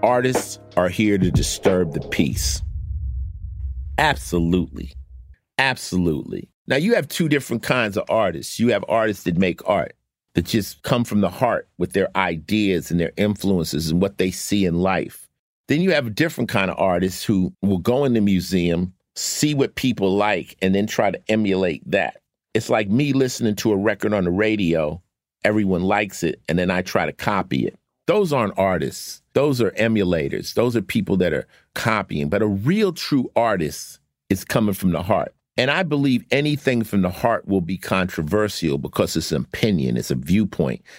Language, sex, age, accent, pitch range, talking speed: English, male, 50-69, American, 90-110 Hz, 180 wpm